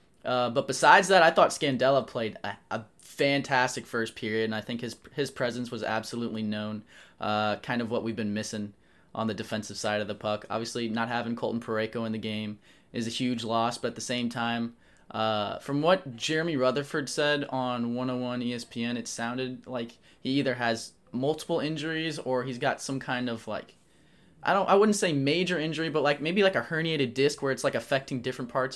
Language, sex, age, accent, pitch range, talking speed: English, male, 20-39, American, 110-130 Hz, 200 wpm